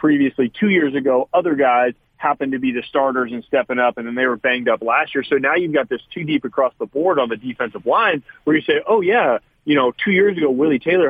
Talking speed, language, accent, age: 260 wpm, English, American, 30-49